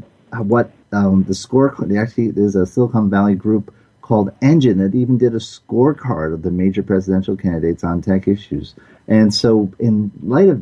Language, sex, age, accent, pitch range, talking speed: English, male, 30-49, American, 90-115 Hz, 170 wpm